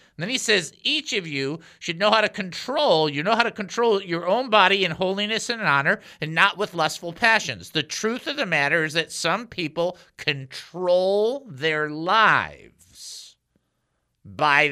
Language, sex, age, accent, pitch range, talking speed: English, male, 50-69, American, 145-210 Hz, 165 wpm